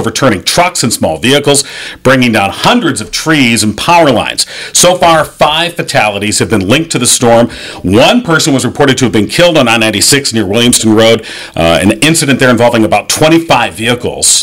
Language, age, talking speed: English, 40-59, 185 wpm